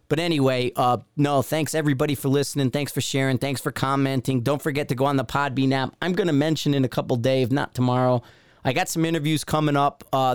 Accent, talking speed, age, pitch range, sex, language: American, 225 wpm, 30-49, 120-140 Hz, male, English